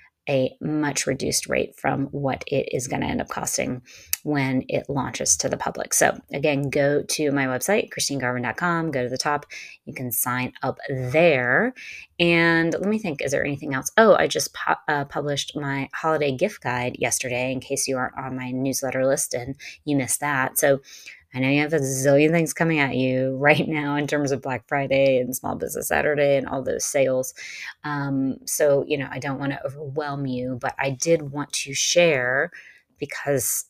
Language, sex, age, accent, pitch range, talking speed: English, female, 30-49, American, 135-150 Hz, 195 wpm